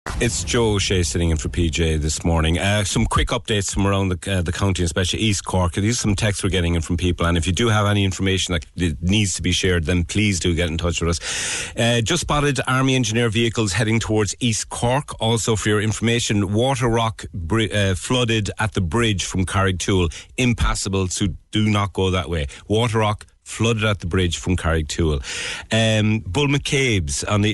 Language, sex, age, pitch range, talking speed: English, male, 40-59, 90-115 Hz, 210 wpm